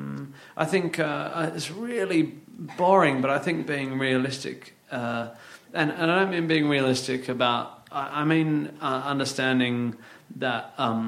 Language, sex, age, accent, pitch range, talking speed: English, male, 30-49, British, 115-145 Hz, 140 wpm